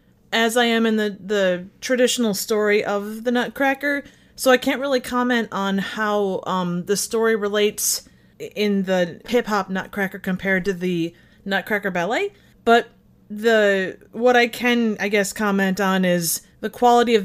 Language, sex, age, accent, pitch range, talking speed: English, female, 30-49, American, 190-225 Hz, 155 wpm